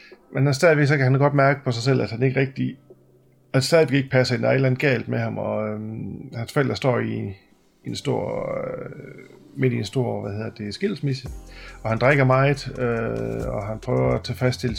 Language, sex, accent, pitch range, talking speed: English, male, Danish, 105-130 Hz, 180 wpm